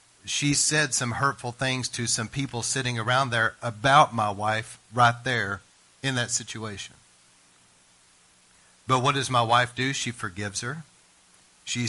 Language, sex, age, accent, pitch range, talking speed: English, male, 40-59, American, 110-145 Hz, 145 wpm